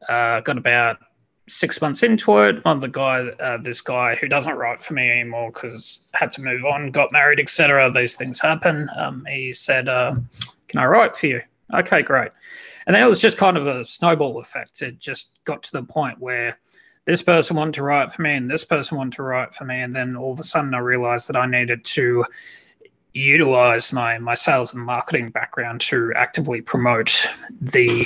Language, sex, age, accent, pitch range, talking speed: English, male, 30-49, Australian, 125-160 Hz, 205 wpm